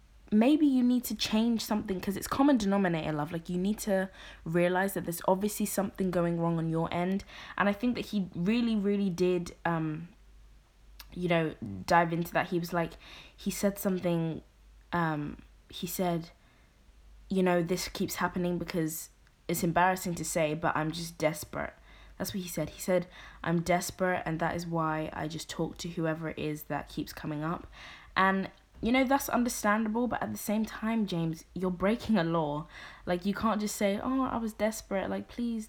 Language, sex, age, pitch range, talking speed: English, female, 20-39, 165-210 Hz, 185 wpm